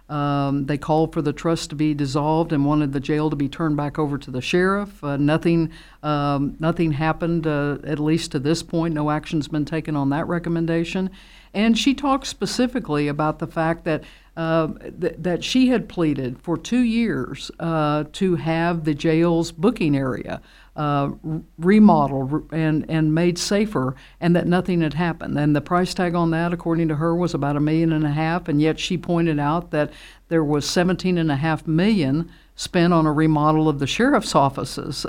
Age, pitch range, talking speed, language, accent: 60-79, 150-175 Hz, 190 wpm, English, American